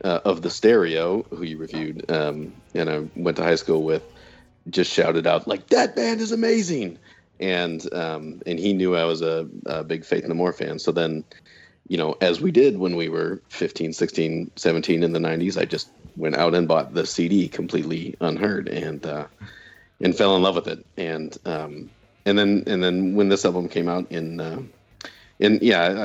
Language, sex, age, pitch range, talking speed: English, male, 40-59, 80-95 Hz, 200 wpm